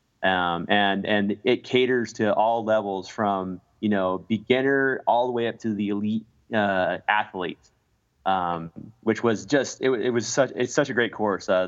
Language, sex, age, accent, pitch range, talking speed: English, male, 30-49, American, 100-120 Hz, 180 wpm